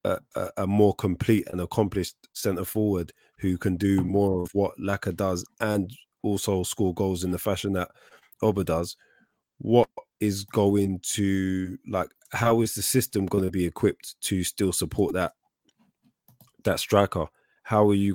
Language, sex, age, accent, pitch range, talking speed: English, male, 20-39, British, 90-105 Hz, 160 wpm